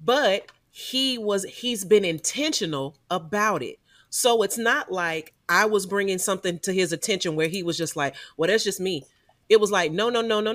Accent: American